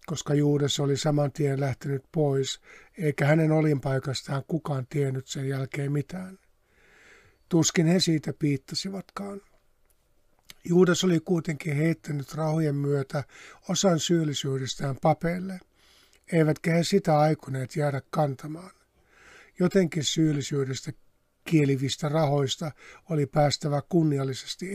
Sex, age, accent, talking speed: male, 60-79, native, 100 wpm